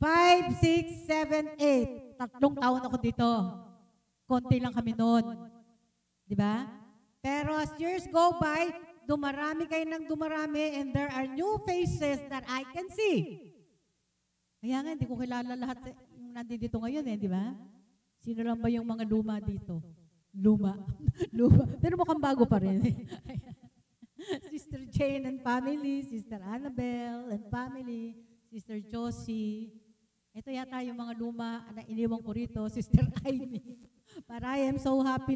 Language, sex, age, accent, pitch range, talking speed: Filipino, female, 50-69, native, 225-290 Hz, 145 wpm